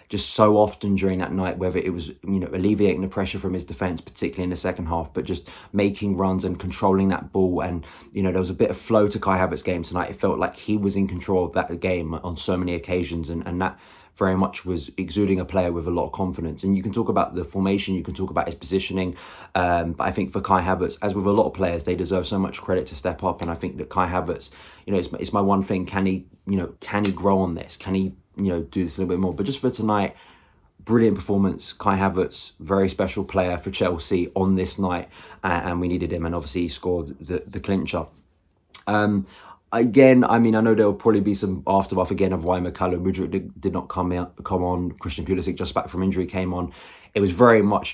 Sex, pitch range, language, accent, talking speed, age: male, 90-100 Hz, English, British, 250 wpm, 20-39